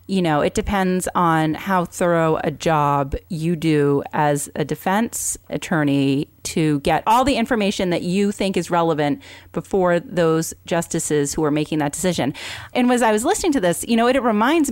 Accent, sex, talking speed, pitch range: American, female, 185 wpm, 165-215 Hz